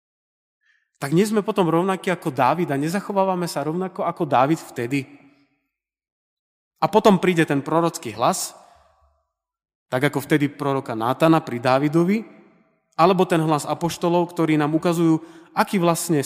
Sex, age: male, 30-49